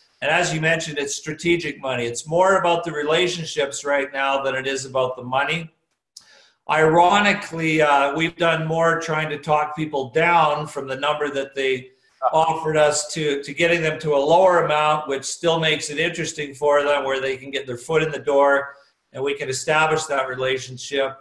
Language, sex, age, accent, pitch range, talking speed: English, male, 50-69, American, 140-170 Hz, 190 wpm